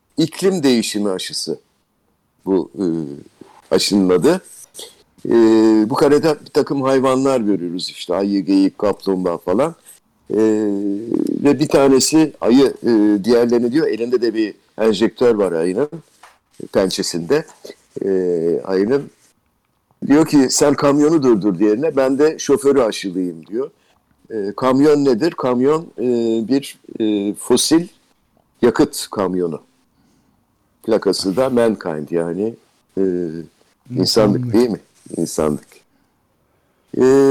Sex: male